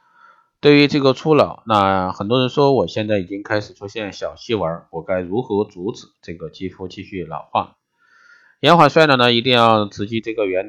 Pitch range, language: 95-125 Hz, Chinese